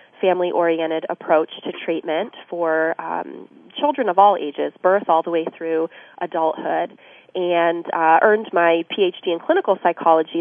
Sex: female